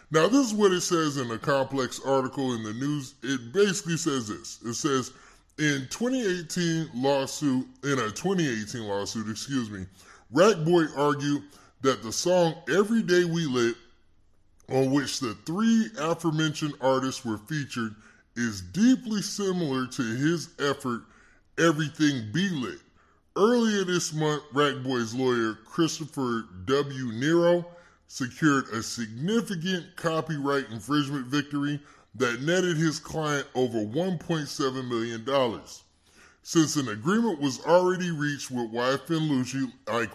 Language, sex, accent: English, female, American